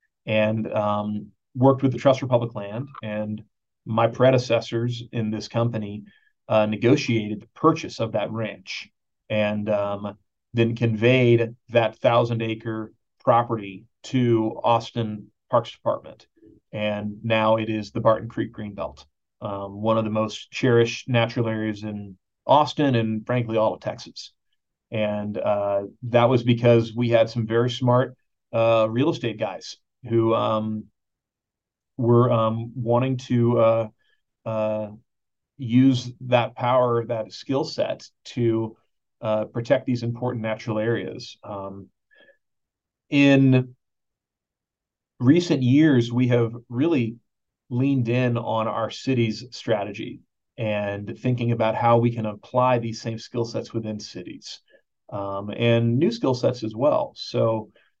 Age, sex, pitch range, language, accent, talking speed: 40-59, male, 110-120 Hz, English, American, 130 wpm